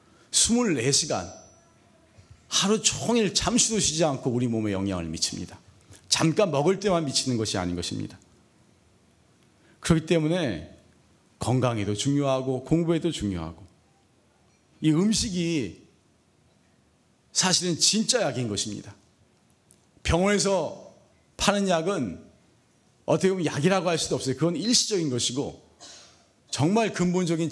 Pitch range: 110-185 Hz